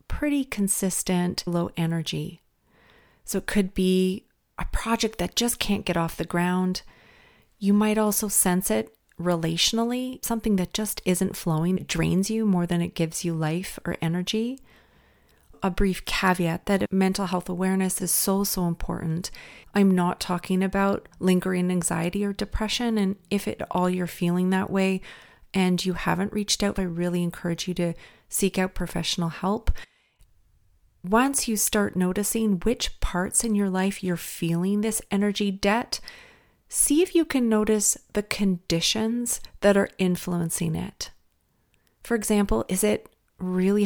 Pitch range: 175-215 Hz